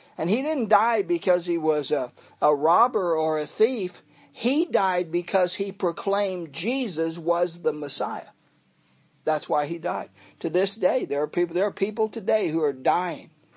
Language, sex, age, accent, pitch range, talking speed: English, male, 50-69, American, 170-220 Hz, 165 wpm